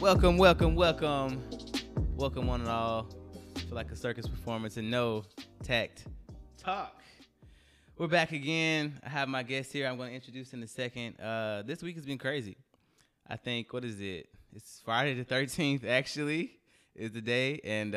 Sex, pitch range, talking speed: male, 100-130 Hz, 170 wpm